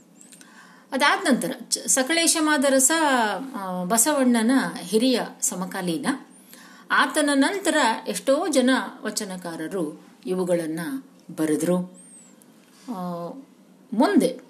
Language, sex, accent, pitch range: Kannada, female, native, 205-275 Hz